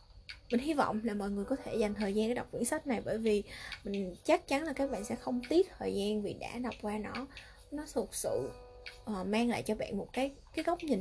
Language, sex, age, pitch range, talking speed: Vietnamese, female, 20-39, 195-260 Hz, 255 wpm